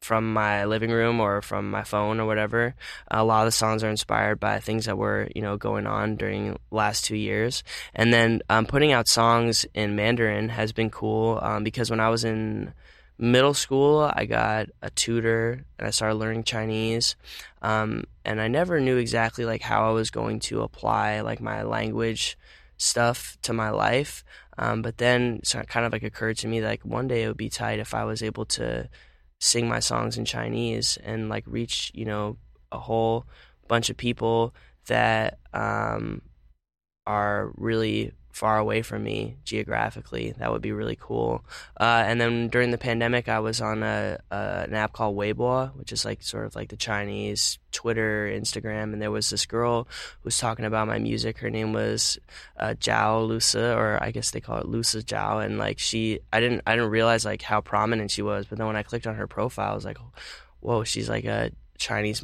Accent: American